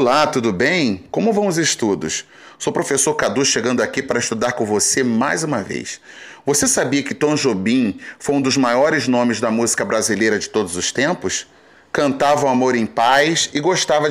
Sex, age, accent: male, 30-49, Brazilian